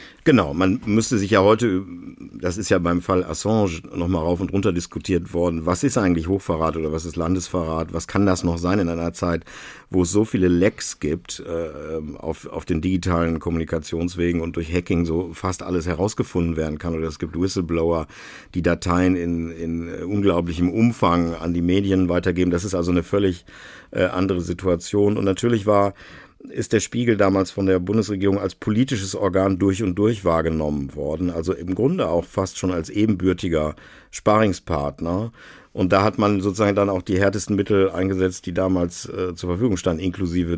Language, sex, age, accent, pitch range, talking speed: German, male, 50-69, German, 85-100 Hz, 180 wpm